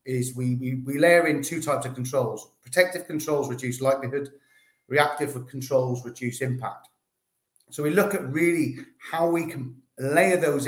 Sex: male